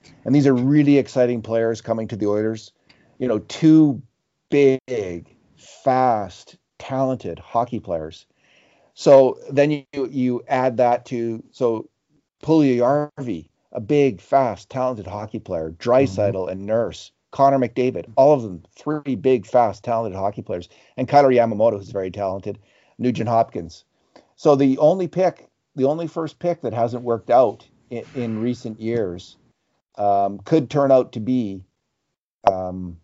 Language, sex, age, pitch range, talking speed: English, male, 50-69, 100-135 Hz, 145 wpm